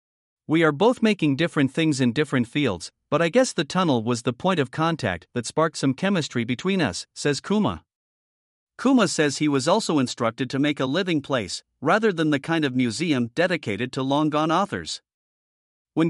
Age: 50-69